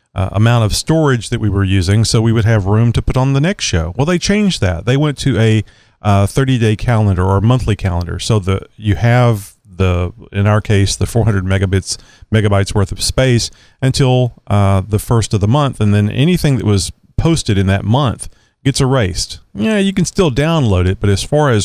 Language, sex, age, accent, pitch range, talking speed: English, male, 40-59, American, 100-120 Hz, 215 wpm